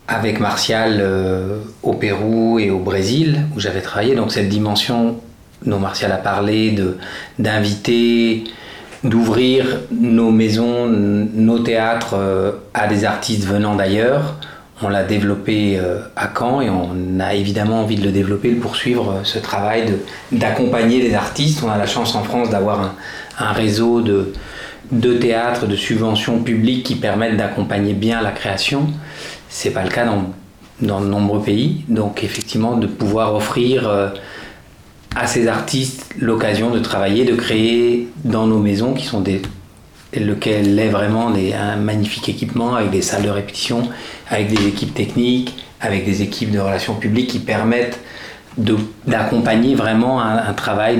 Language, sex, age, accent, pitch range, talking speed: French, male, 40-59, French, 100-115 Hz, 160 wpm